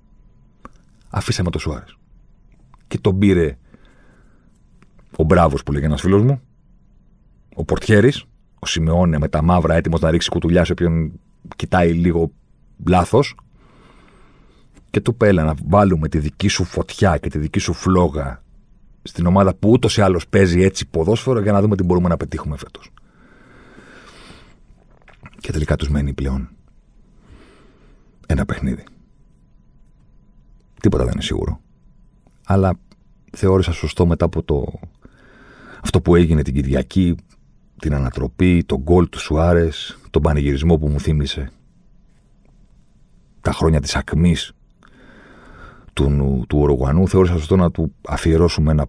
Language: Greek